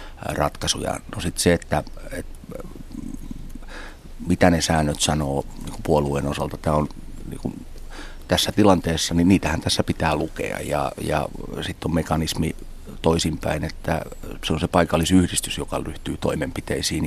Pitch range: 75-85 Hz